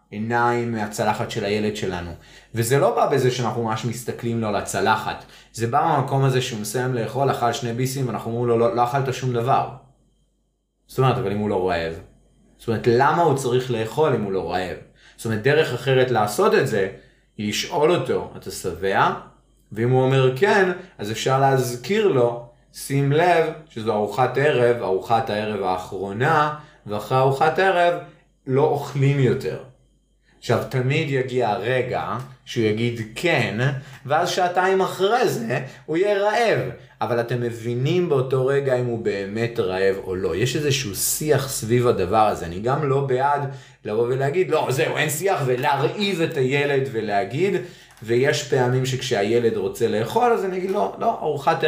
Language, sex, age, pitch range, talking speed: Hebrew, male, 30-49, 115-150 Hz, 145 wpm